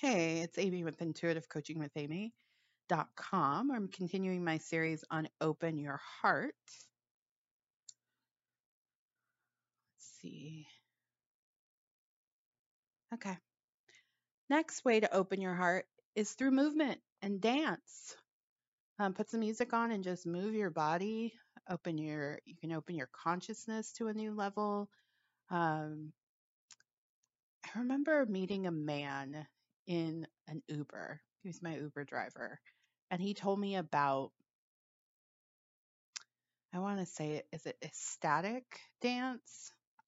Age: 30-49